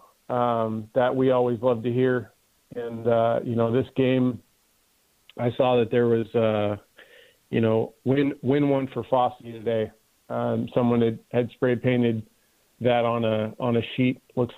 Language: English